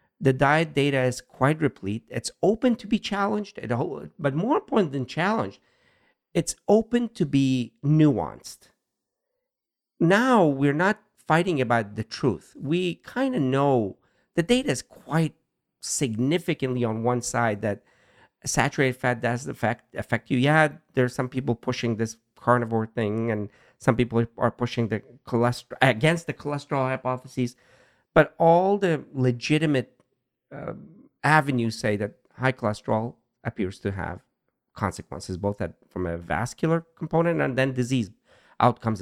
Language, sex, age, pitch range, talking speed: English, male, 50-69, 115-165 Hz, 140 wpm